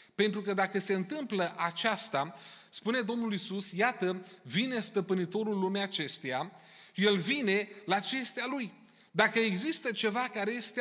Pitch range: 195-240 Hz